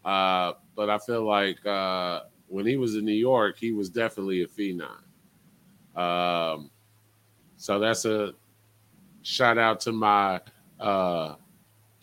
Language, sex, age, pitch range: English, male, 30-49, 100-115 Hz